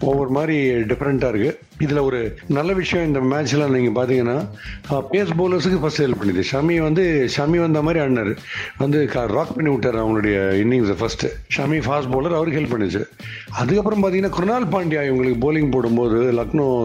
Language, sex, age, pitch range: Tamil, male, 60-79, 115-150 Hz